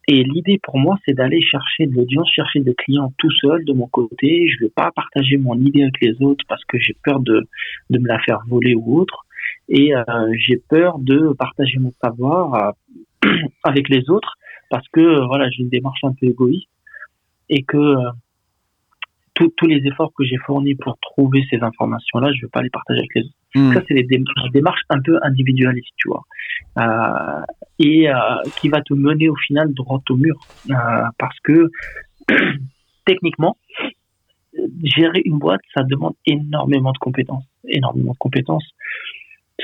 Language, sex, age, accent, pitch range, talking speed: English, male, 40-59, French, 125-155 Hz, 180 wpm